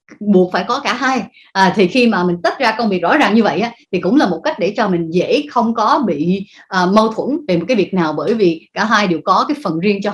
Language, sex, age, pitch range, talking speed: Vietnamese, female, 20-39, 185-260 Hz, 290 wpm